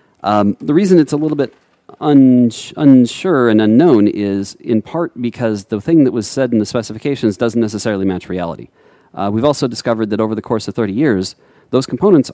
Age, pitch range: 40-59, 105-130 Hz